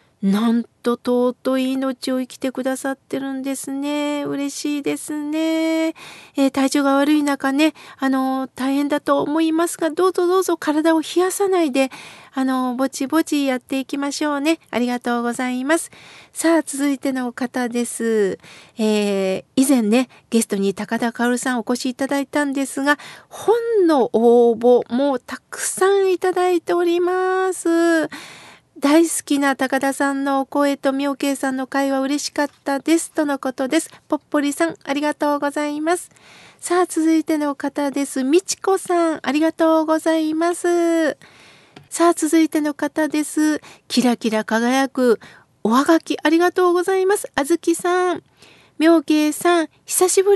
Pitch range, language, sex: 265-330 Hz, Japanese, female